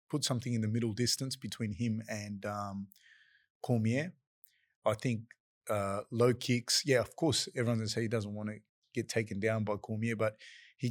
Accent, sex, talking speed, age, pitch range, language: Australian, male, 185 wpm, 20-39, 110-125 Hz, English